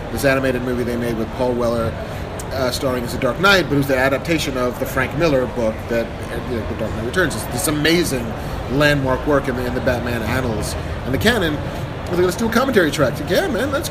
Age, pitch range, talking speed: 30-49, 115-150 Hz, 210 wpm